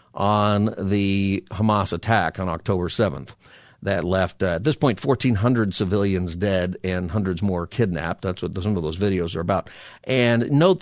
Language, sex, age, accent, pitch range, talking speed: English, male, 50-69, American, 100-145 Hz, 165 wpm